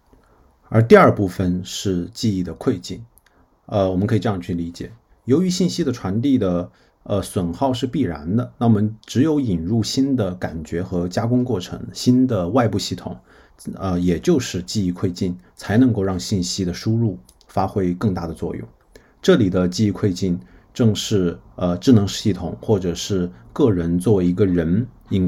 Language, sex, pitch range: Chinese, male, 90-115 Hz